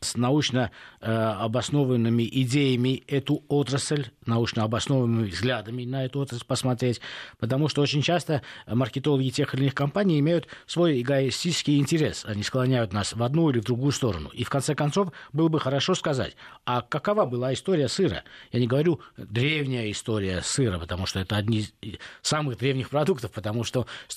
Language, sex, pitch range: Russian, male, 110-140 Hz